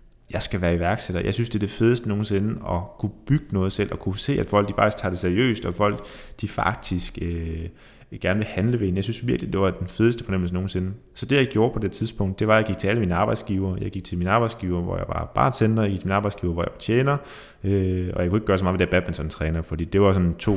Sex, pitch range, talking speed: male, 90-110 Hz, 275 wpm